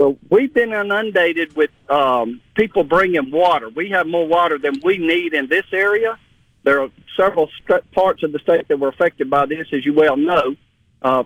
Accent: American